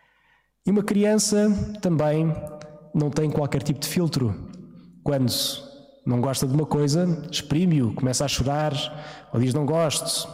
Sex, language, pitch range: male, Portuguese, 135-165 Hz